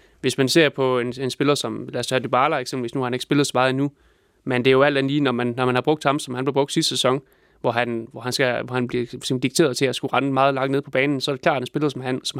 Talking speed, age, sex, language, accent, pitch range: 330 wpm, 20-39, male, Danish, native, 125-145 Hz